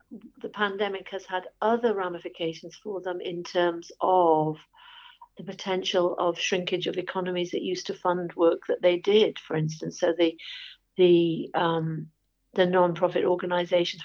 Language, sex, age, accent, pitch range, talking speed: English, female, 50-69, British, 170-195 Hz, 145 wpm